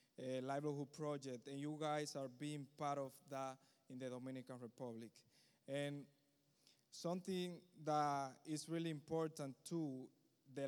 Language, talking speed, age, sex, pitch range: English, 135 wpm, 20-39, male, 130-145 Hz